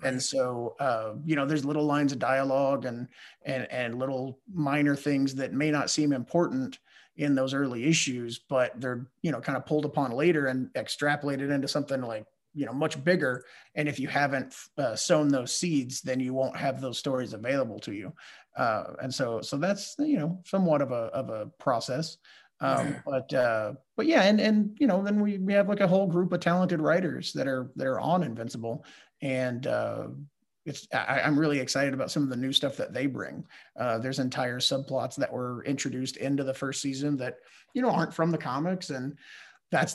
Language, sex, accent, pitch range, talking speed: English, male, American, 130-155 Hz, 200 wpm